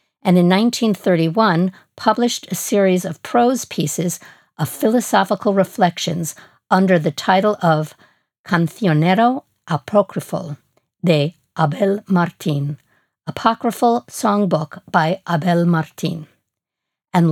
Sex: female